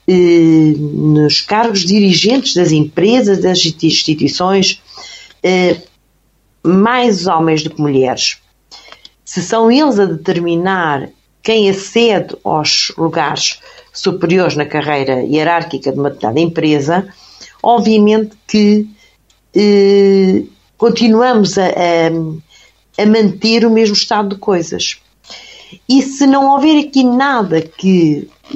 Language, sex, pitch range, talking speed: Portuguese, female, 160-210 Hz, 95 wpm